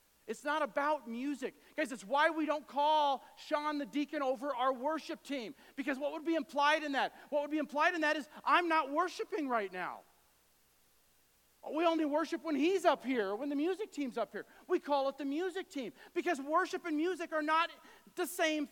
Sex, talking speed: male, 200 wpm